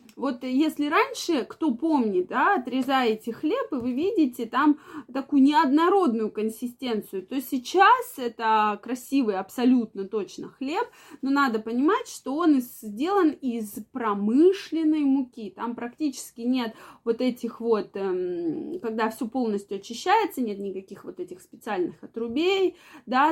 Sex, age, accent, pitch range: female, 20-39, native, 225-305 Hz